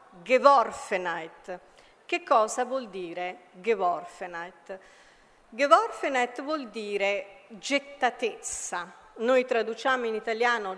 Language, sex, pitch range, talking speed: Italian, female, 210-295 Hz, 80 wpm